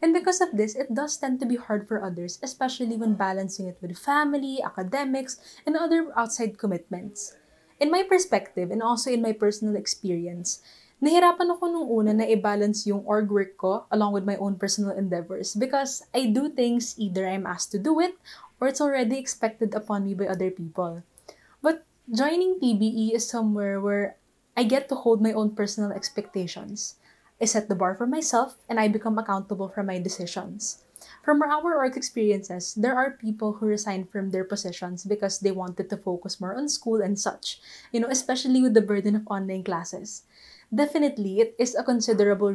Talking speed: 185 wpm